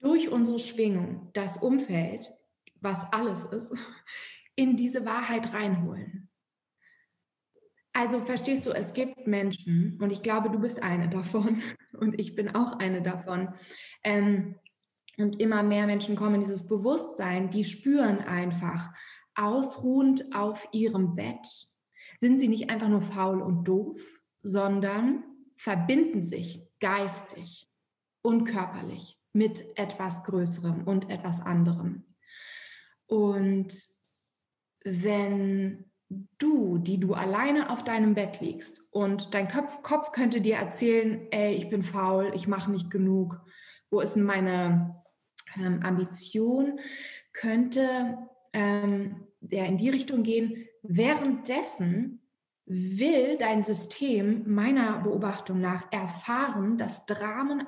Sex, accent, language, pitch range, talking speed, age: female, German, German, 190-240 Hz, 120 wpm, 20-39